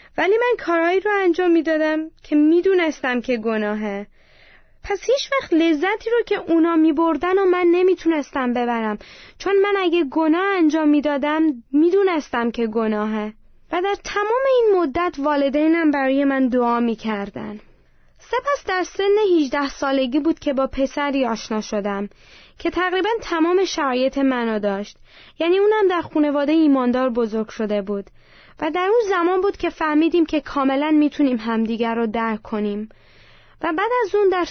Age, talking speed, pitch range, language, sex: 20-39, 150 wpm, 255-350 Hz, Persian, female